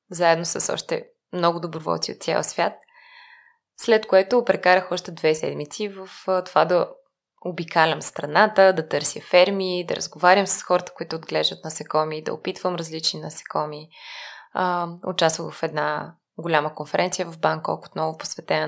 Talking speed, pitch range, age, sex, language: 140 wpm, 165-195 Hz, 20-39, female, Bulgarian